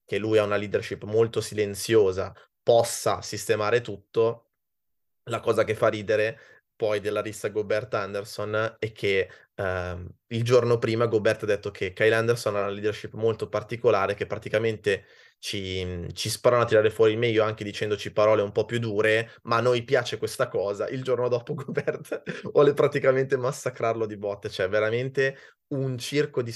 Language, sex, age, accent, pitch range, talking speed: Italian, male, 20-39, native, 105-130 Hz, 165 wpm